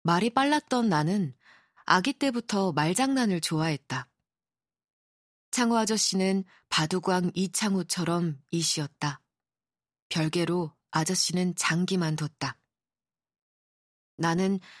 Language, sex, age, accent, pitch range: Korean, female, 20-39, native, 155-210 Hz